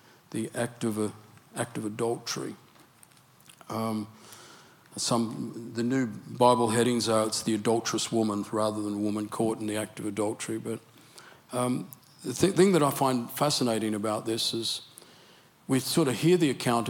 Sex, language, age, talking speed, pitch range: male, Swedish, 50-69, 160 wpm, 110-130 Hz